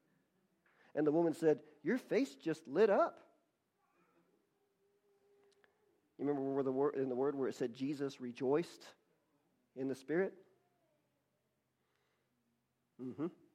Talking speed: 115 wpm